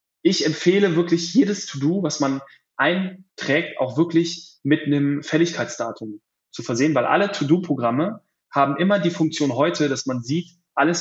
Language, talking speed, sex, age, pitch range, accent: German, 145 wpm, male, 10-29, 140-180 Hz, German